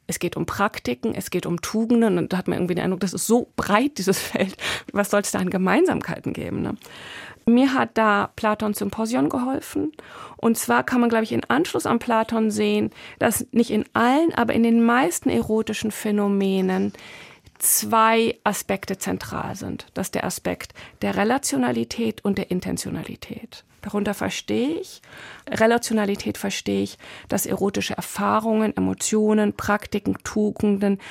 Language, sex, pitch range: German, female, 200-230 Hz